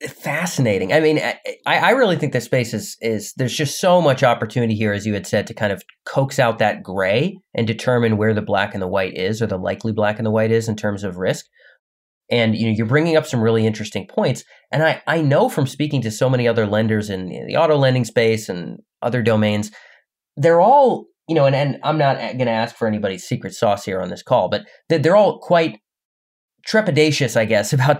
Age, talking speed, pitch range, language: 30-49, 225 wpm, 115-170 Hz, English